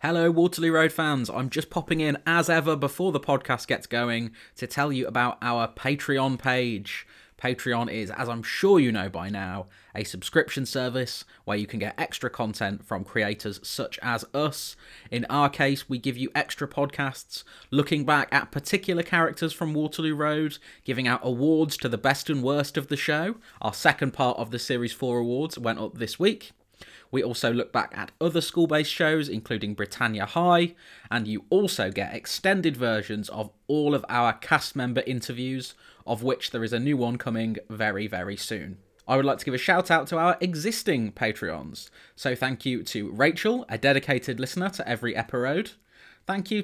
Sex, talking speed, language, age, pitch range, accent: male, 185 wpm, English, 30-49, 115-155 Hz, British